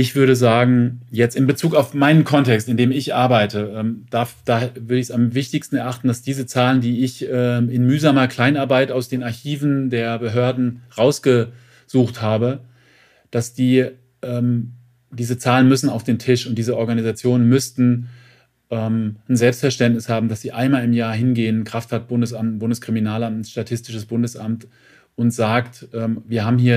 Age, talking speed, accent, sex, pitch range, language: 40-59, 145 wpm, German, male, 115-130 Hz, German